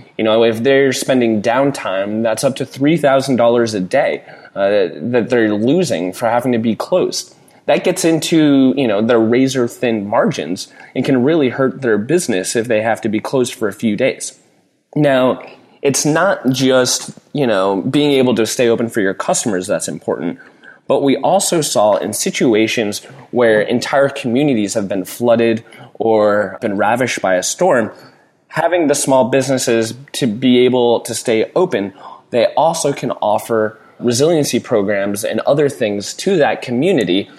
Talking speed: 160 wpm